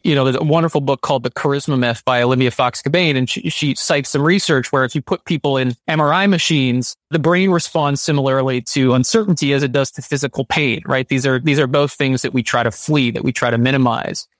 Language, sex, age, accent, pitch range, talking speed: English, male, 30-49, American, 135-175 Hz, 240 wpm